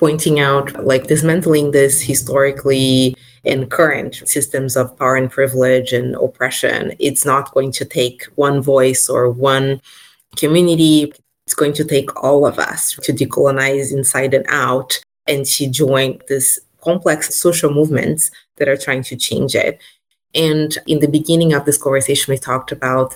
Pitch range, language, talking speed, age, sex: 135-155 Hz, English, 155 wpm, 30-49, female